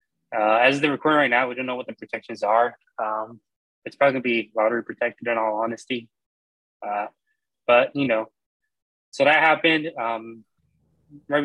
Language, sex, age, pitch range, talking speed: English, male, 20-39, 115-130 Hz, 175 wpm